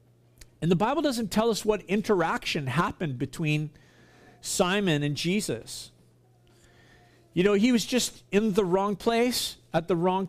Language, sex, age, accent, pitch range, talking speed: English, male, 50-69, American, 145-200 Hz, 145 wpm